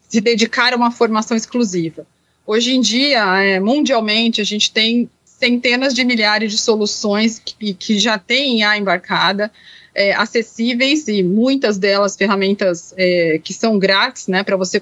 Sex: female